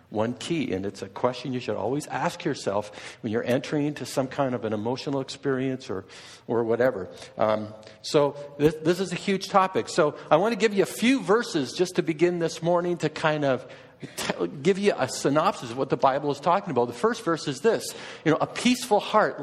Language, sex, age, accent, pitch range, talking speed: English, male, 50-69, American, 130-200 Hz, 220 wpm